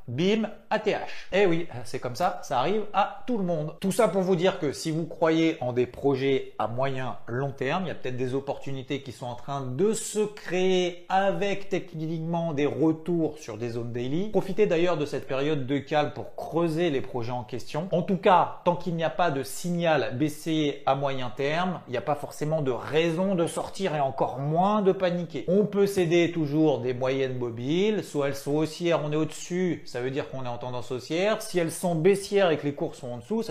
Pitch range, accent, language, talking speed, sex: 140-190 Hz, French, French, 225 wpm, male